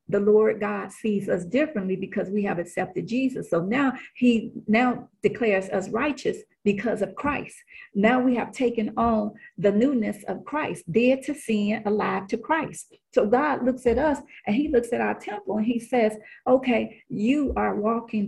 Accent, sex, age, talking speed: American, female, 40-59, 175 wpm